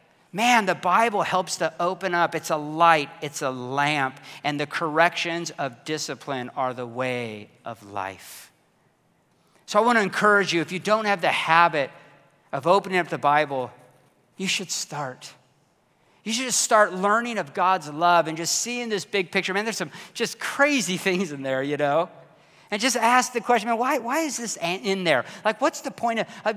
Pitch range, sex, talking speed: 145-195 Hz, male, 190 wpm